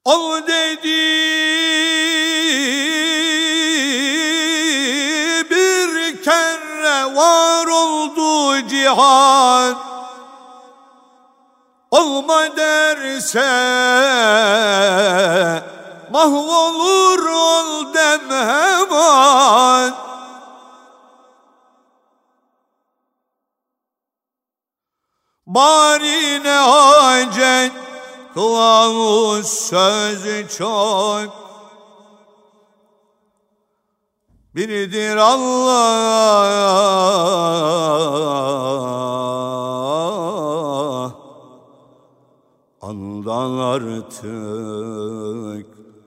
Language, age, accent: Turkish, 60-79, native